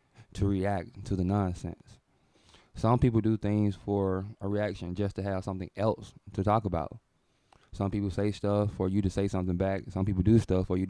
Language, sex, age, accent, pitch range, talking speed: English, male, 20-39, American, 95-105 Hz, 200 wpm